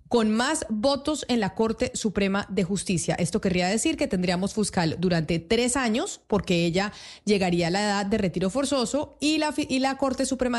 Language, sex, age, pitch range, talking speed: Spanish, female, 30-49, 190-235 Hz, 185 wpm